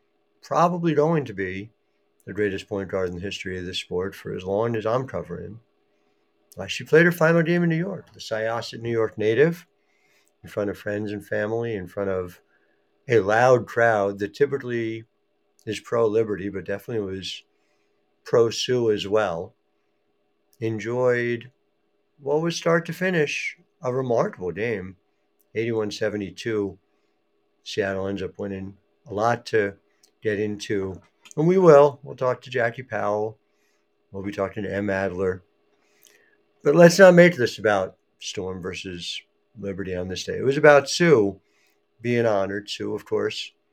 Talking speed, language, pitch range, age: 150 wpm, English, 95-125 Hz, 60-79